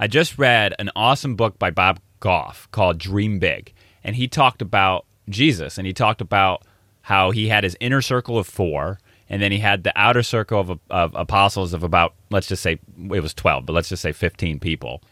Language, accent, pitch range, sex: English, American, 95-115 Hz, male